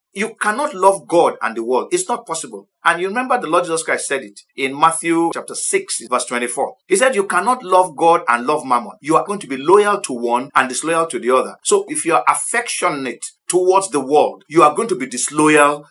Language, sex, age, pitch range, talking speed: English, male, 50-69, 155-240 Hz, 230 wpm